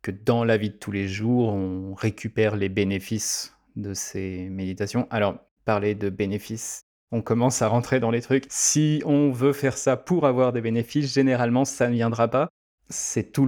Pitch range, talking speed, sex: 100-120 Hz, 185 wpm, male